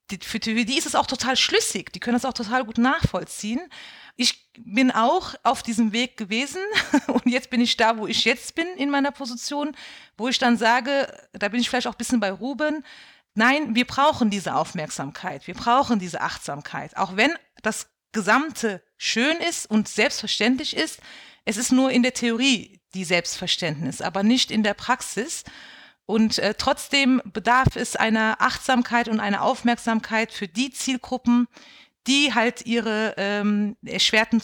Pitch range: 210-260 Hz